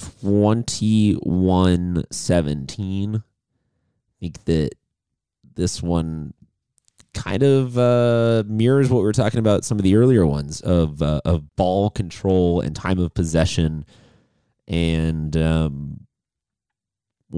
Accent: American